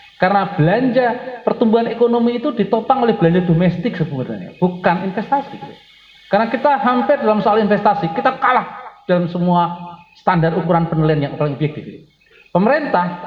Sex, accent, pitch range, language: male, native, 165-220 Hz, Indonesian